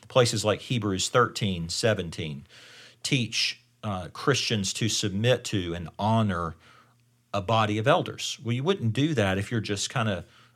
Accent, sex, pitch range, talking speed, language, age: American, male, 100-120 Hz, 150 wpm, English, 40-59